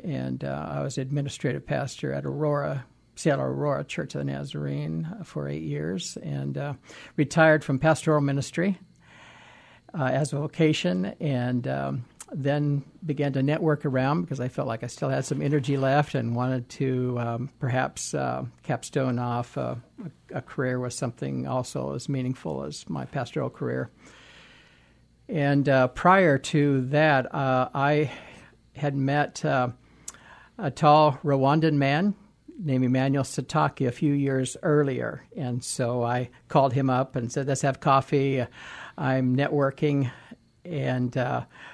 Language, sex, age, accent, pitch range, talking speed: English, male, 60-79, American, 120-145 Hz, 145 wpm